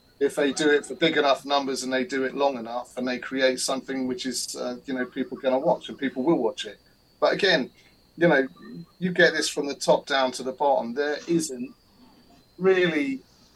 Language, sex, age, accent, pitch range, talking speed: English, male, 30-49, British, 110-130 Hz, 215 wpm